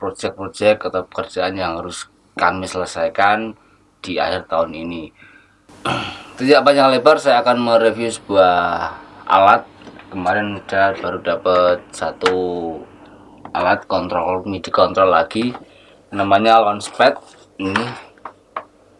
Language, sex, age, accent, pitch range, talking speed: Indonesian, male, 20-39, native, 90-115 Hz, 105 wpm